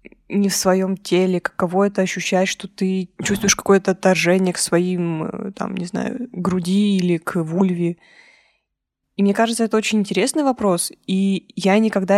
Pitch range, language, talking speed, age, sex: 180-215 Hz, Russian, 155 wpm, 20-39, female